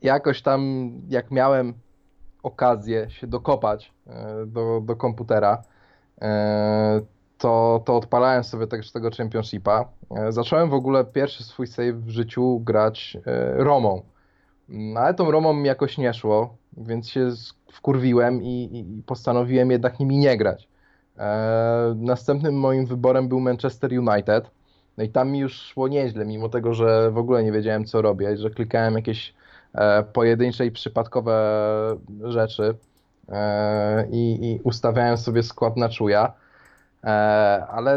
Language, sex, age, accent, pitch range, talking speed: Polish, male, 20-39, native, 105-125 Hz, 130 wpm